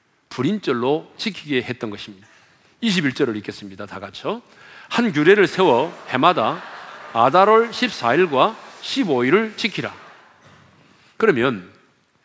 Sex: male